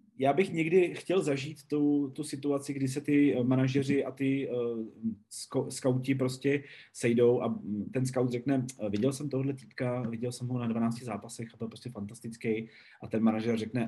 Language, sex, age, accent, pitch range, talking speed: Czech, male, 30-49, native, 115-130 Hz, 175 wpm